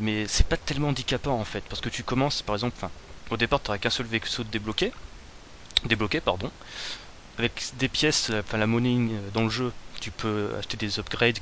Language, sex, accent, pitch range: French, male, French, 100-130 Hz